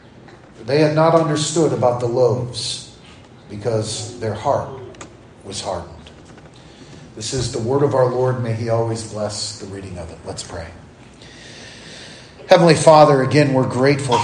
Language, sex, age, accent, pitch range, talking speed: English, male, 40-59, American, 110-130 Hz, 145 wpm